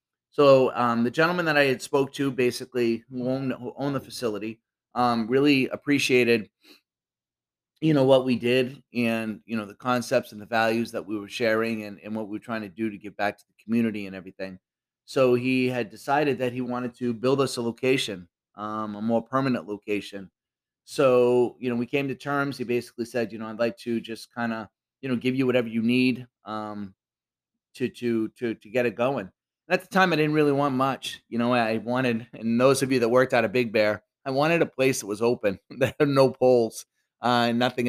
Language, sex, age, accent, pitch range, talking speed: English, male, 30-49, American, 110-130 Hz, 215 wpm